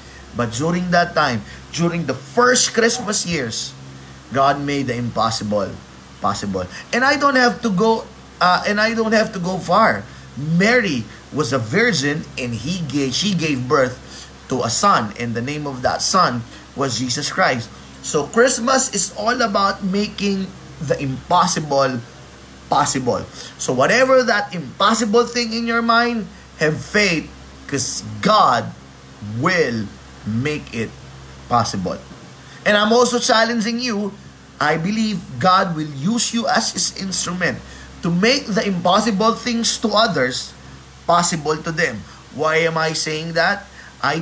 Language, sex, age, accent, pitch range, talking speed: Filipino, male, 20-39, native, 125-200 Hz, 145 wpm